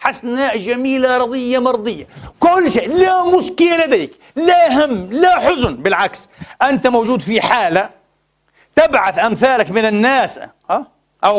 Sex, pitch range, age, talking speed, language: male, 185-255 Hz, 40-59, 125 wpm, Arabic